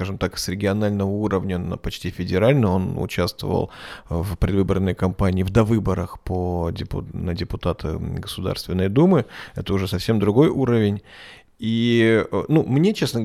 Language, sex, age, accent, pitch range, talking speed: Russian, male, 20-39, native, 105-150 Hz, 130 wpm